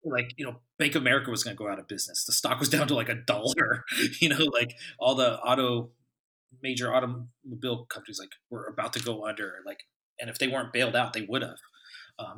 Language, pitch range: English, 115-145 Hz